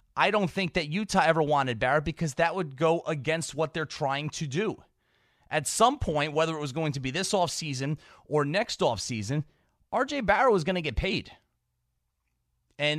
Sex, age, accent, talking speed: male, 30-49, American, 185 wpm